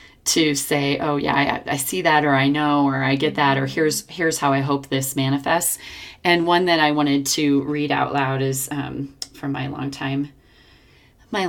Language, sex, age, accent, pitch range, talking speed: English, female, 30-49, American, 135-145 Hz, 205 wpm